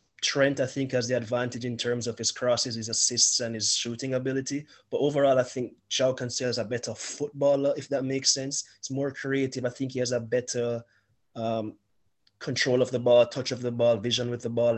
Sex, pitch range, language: male, 120-135 Hz, English